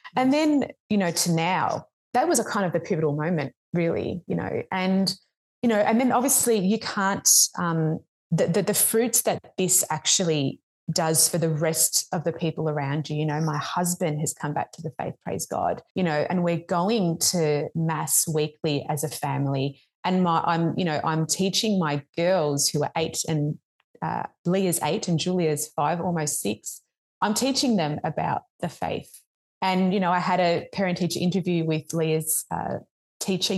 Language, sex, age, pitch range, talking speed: English, female, 20-39, 160-205 Hz, 185 wpm